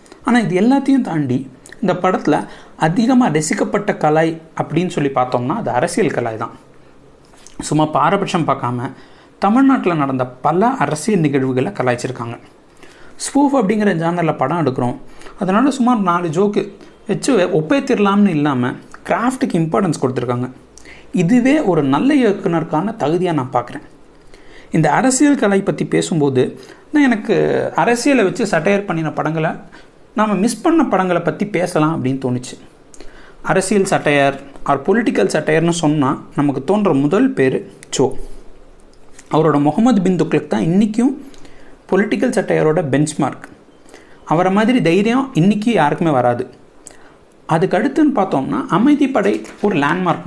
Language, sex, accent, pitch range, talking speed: Tamil, male, native, 145-215 Hz, 115 wpm